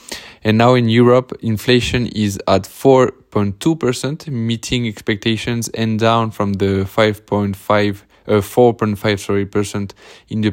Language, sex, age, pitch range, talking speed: English, male, 20-39, 100-120 Hz, 105 wpm